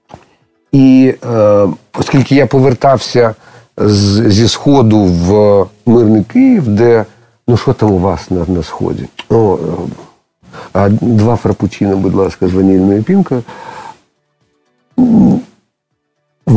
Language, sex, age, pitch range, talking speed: Ukrainian, male, 50-69, 95-125 Hz, 100 wpm